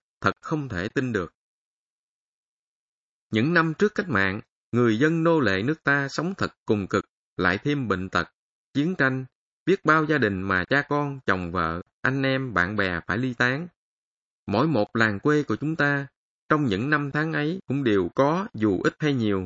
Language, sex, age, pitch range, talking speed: Vietnamese, male, 20-39, 100-150 Hz, 190 wpm